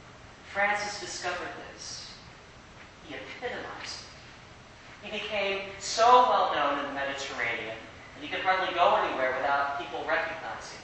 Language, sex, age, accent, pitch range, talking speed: English, male, 40-59, American, 130-175 Hz, 125 wpm